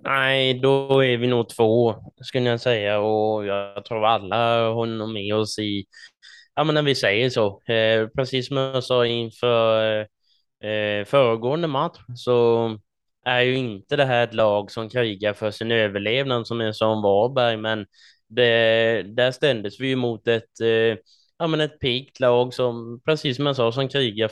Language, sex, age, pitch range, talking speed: Swedish, male, 20-39, 110-130 Hz, 165 wpm